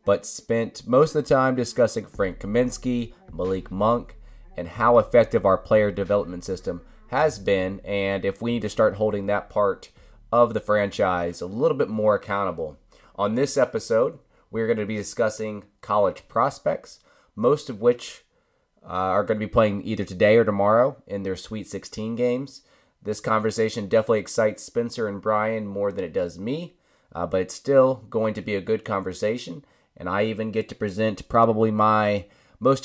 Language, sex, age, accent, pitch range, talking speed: English, male, 20-39, American, 100-115 Hz, 175 wpm